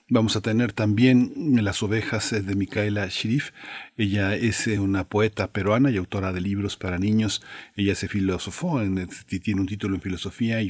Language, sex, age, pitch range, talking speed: Spanish, male, 40-59, 95-120 Hz, 170 wpm